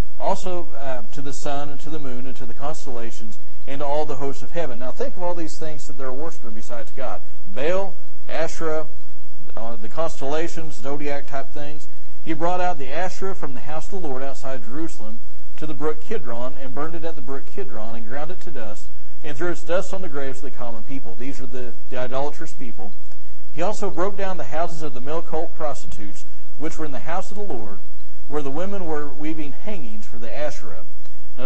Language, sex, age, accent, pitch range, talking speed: English, male, 40-59, American, 115-155 Hz, 215 wpm